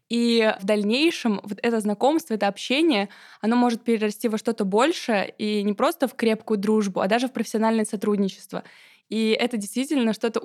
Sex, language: female, Russian